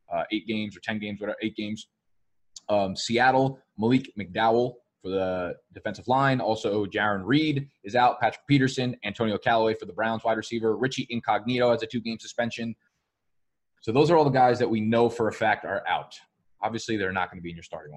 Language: English